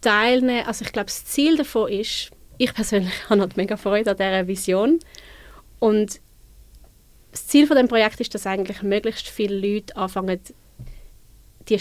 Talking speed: 160 wpm